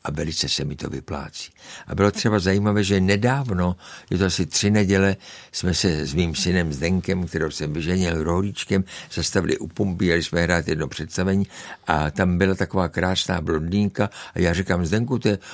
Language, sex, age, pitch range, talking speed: Czech, male, 60-79, 90-120 Hz, 180 wpm